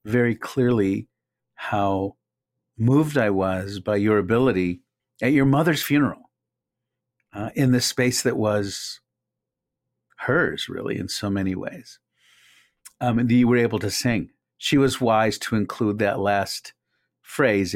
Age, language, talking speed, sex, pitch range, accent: 50-69, English, 135 wpm, male, 105-135 Hz, American